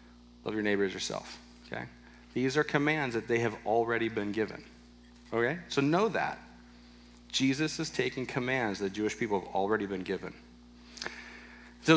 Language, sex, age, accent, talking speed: English, male, 40-59, American, 155 wpm